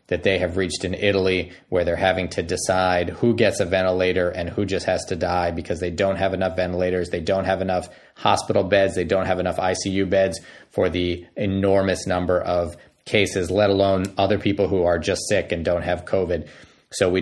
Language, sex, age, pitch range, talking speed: English, male, 30-49, 90-100 Hz, 205 wpm